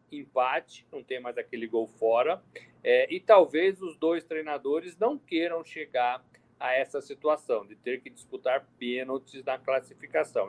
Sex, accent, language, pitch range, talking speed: male, Brazilian, Portuguese, 125-170 Hz, 150 wpm